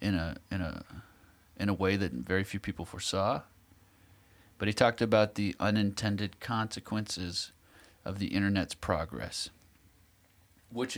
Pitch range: 90-110 Hz